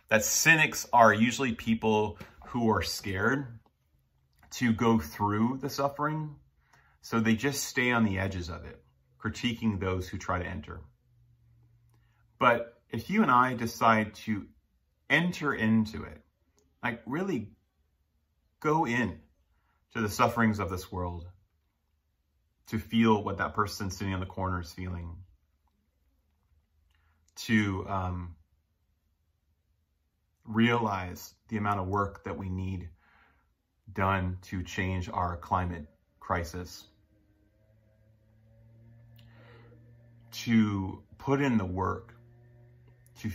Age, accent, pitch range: 30-49, American, 80-115 Hz